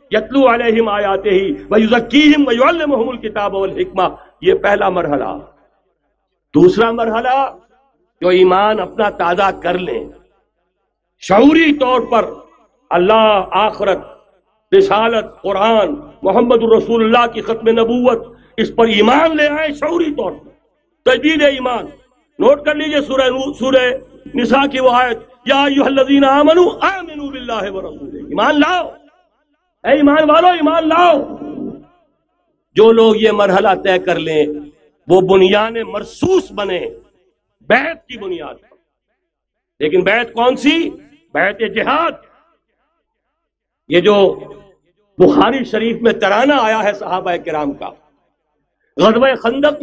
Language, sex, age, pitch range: Urdu, male, 50-69, 220-295 Hz